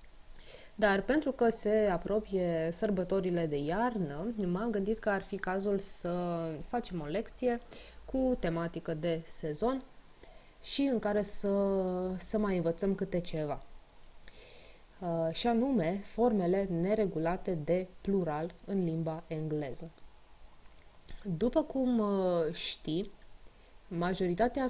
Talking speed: 105 wpm